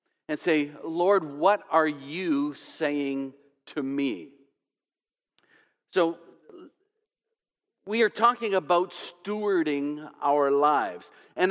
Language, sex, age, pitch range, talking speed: English, male, 50-69, 145-210 Hz, 95 wpm